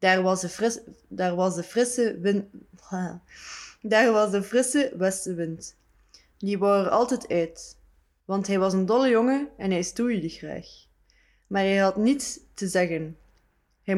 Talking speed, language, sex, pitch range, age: 125 wpm, Dutch, female, 175-220 Hz, 20-39